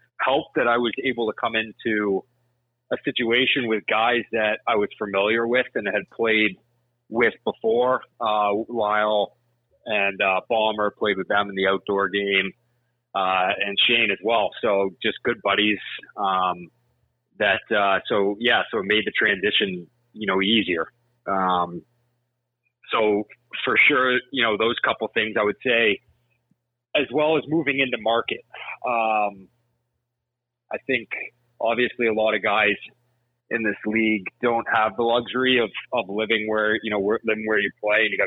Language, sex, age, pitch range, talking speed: English, male, 30-49, 100-120 Hz, 165 wpm